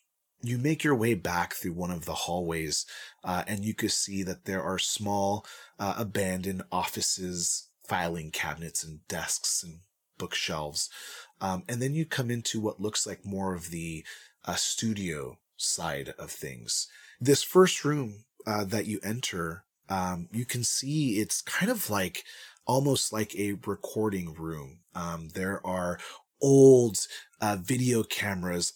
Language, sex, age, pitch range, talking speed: English, male, 30-49, 90-110 Hz, 150 wpm